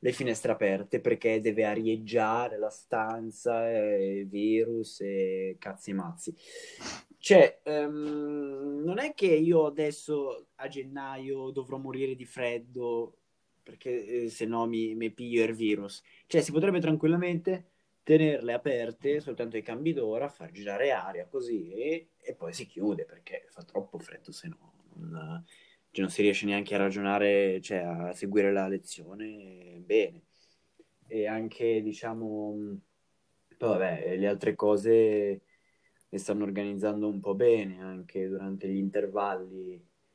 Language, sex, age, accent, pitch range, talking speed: Italian, male, 20-39, native, 100-140 Hz, 135 wpm